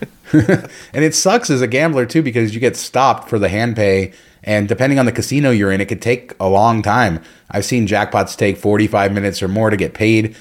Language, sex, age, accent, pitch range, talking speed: English, male, 30-49, American, 95-115 Hz, 230 wpm